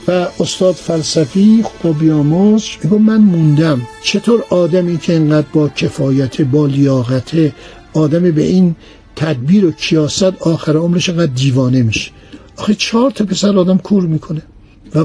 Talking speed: 145 wpm